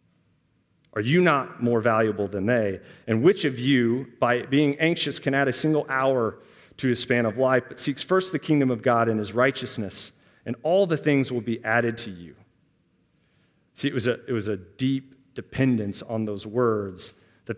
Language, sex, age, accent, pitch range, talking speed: English, male, 40-59, American, 110-135 Hz, 185 wpm